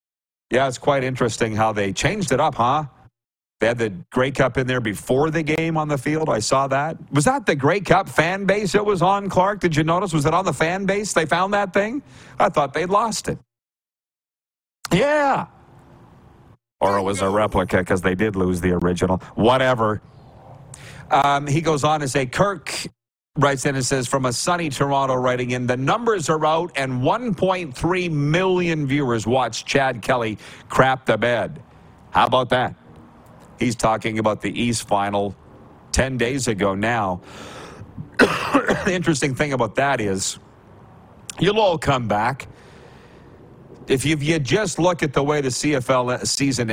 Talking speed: 170 wpm